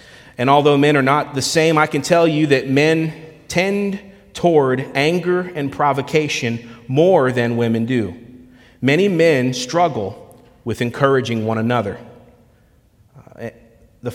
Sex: male